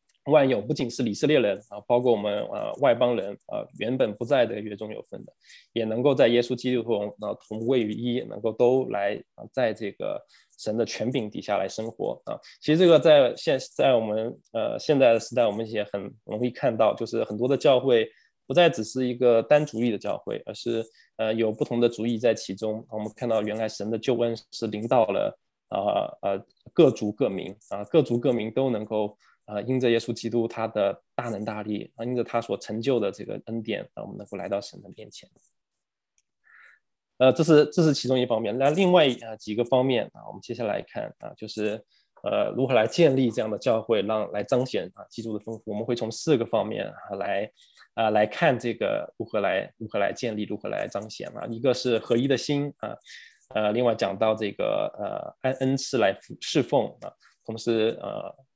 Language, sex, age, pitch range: English, male, 20-39, 110-125 Hz